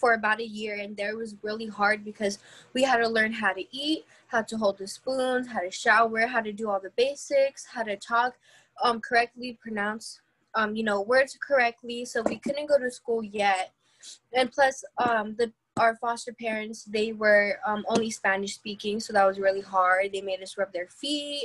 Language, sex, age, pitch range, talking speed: English, female, 10-29, 205-230 Hz, 200 wpm